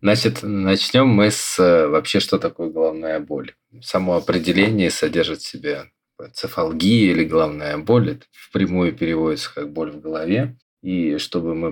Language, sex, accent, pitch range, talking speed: Russian, male, native, 85-110 Hz, 145 wpm